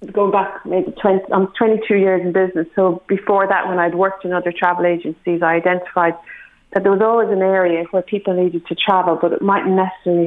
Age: 30-49